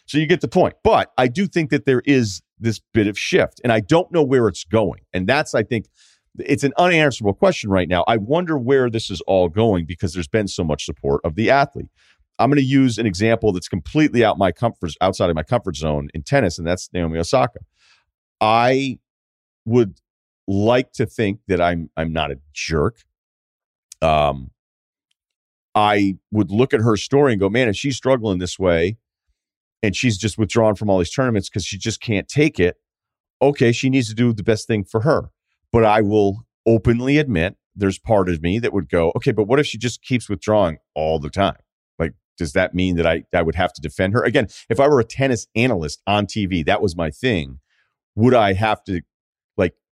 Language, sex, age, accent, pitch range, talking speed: English, male, 40-59, American, 90-125 Hz, 210 wpm